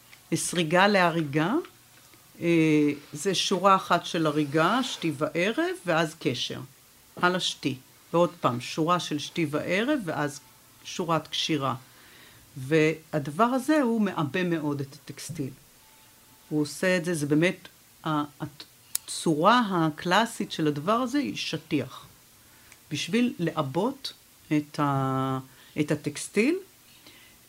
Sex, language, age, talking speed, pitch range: female, Hebrew, 60-79, 100 wpm, 150-225 Hz